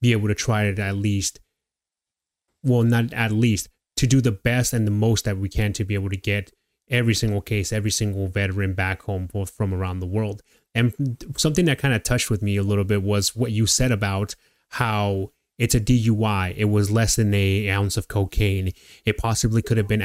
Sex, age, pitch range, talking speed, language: male, 20-39, 100-115 Hz, 215 wpm, English